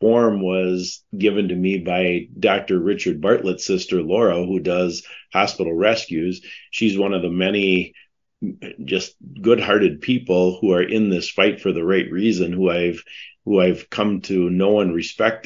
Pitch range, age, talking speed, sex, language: 90-110 Hz, 40-59, 155 wpm, male, English